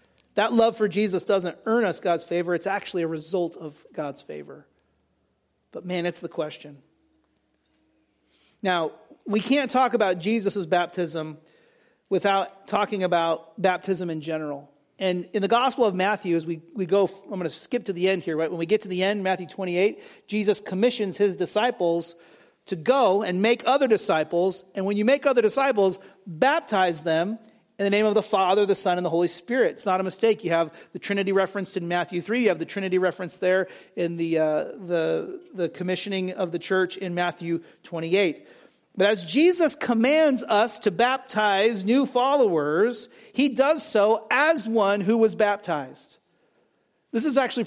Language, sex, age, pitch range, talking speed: English, male, 40-59, 175-220 Hz, 175 wpm